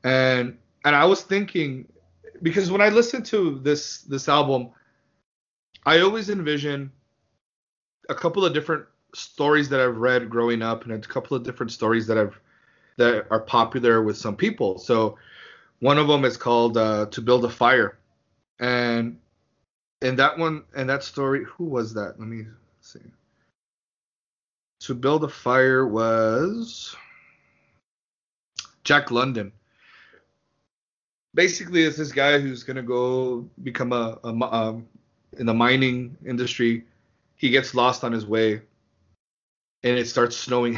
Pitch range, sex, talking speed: 115-140 Hz, male, 145 wpm